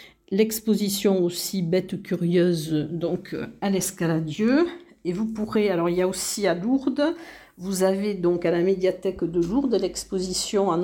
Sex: female